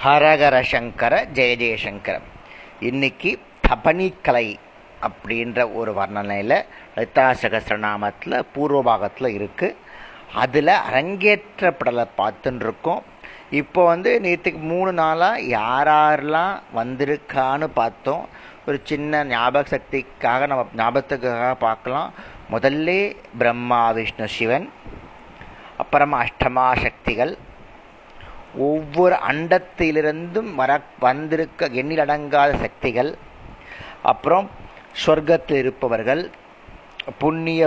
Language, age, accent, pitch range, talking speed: Tamil, 30-49, native, 120-155 Hz, 80 wpm